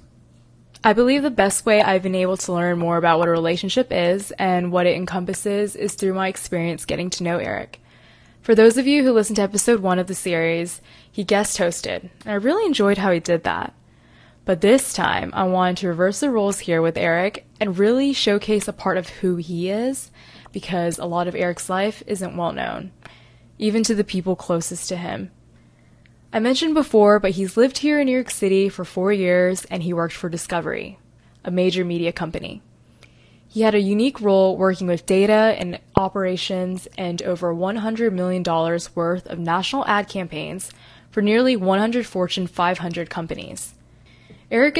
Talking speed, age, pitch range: 185 wpm, 10-29, 175-210 Hz